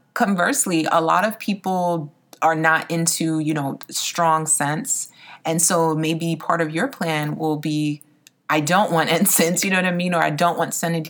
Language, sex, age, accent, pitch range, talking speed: English, female, 30-49, American, 150-180 Hz, 190 wpm